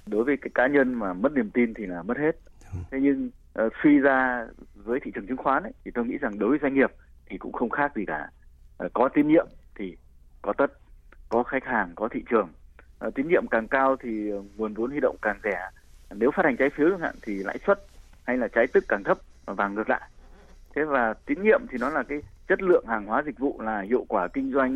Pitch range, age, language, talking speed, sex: 90-145 Hz, 20-39, Vietnamese, 245 wpm, male